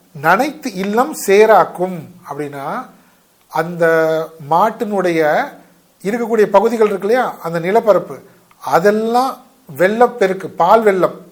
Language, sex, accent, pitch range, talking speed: Tamil, male, native, 165-220 Hz, 85 wpm